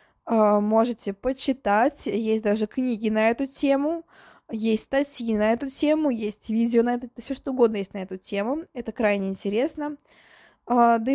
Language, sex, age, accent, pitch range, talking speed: Russian, female, 20-39, native, 200-260 Hz, 155 wpm